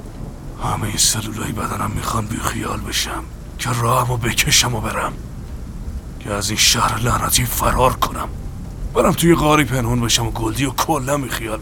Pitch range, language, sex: 95-110 Hz, Persian, male